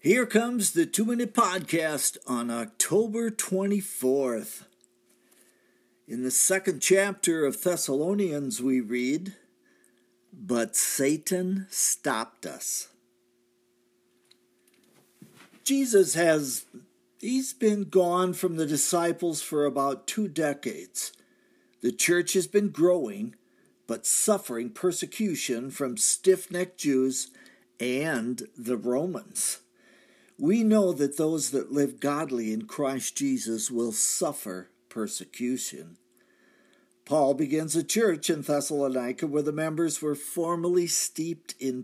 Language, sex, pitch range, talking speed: English, male, 125-185 Hz, 110 wpm